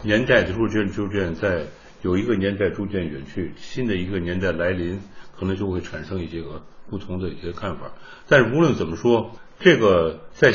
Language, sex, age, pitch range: Chinese, male, 60-79, 90-120 Hz